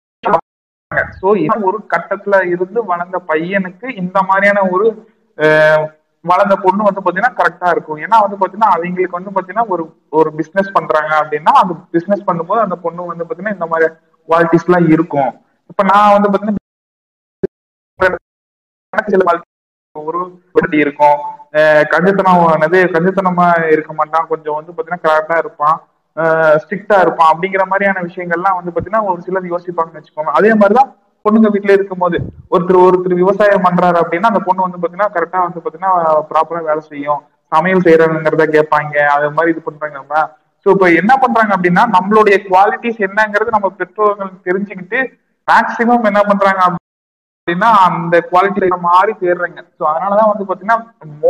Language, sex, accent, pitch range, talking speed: Tamil, male, native, 160-195 Hz, 65 wpm